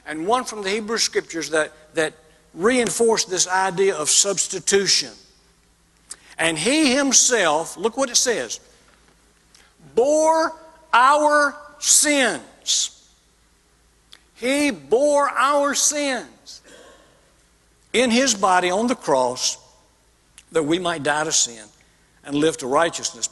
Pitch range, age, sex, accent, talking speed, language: 150-225 Hz, 60-79, male, American, 110 wpm, English